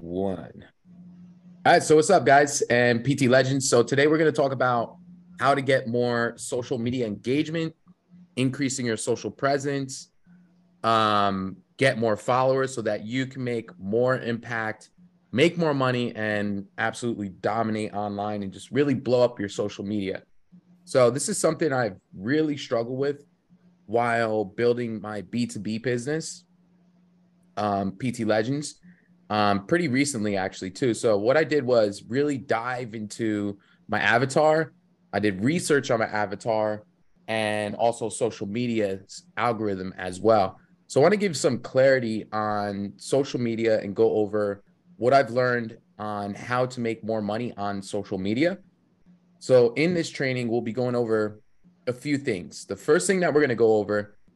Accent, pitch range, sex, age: American, 105-150 Hz, male, 20-39